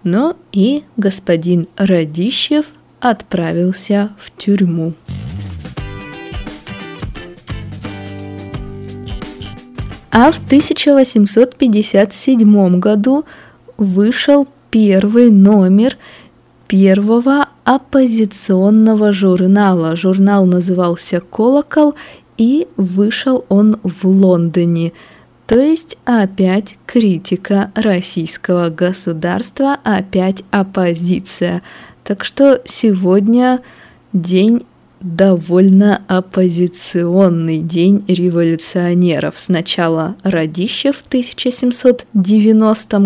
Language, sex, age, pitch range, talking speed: Russian, female, 20-39, 175-225 Hz, 65 wpm